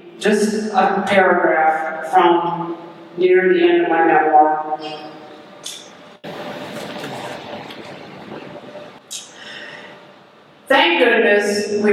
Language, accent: English, American